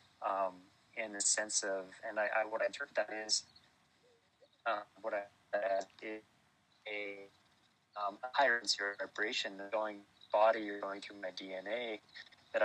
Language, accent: English, American